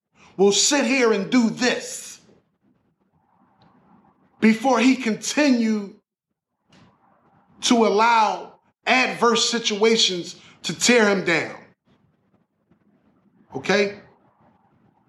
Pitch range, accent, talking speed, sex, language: 200-240 Hz, American, 70 wpm, male, English